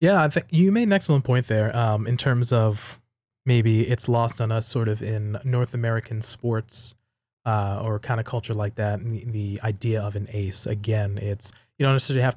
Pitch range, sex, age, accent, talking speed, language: 110-125 Hz, male, 20-39, American, 215 wpm, English